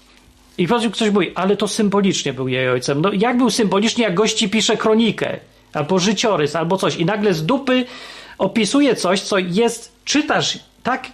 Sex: male